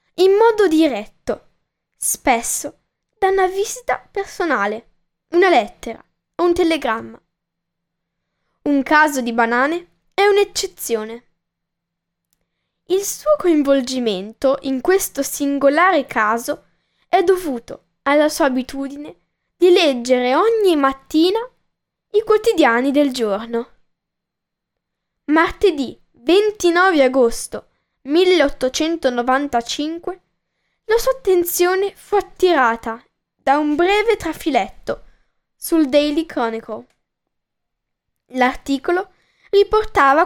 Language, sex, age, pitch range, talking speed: Italian, female, 10-29, 255-360 Hz, 85 wpm